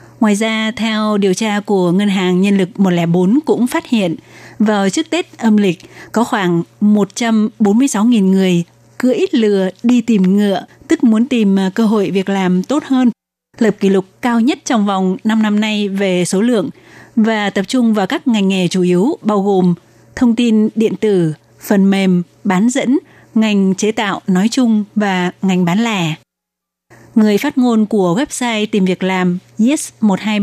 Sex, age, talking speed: female, 20-39, 175 wpm